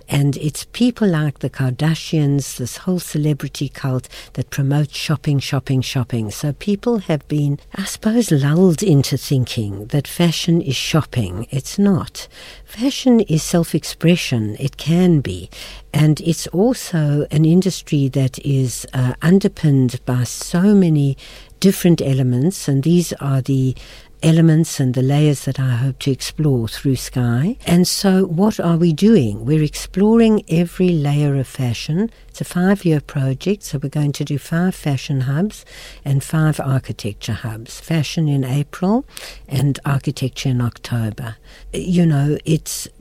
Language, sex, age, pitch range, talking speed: English, female, 60-79, 130-165 Hz, 145 wpm